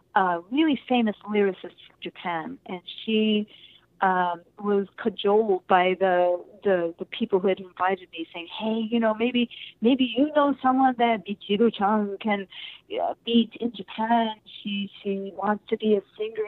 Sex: female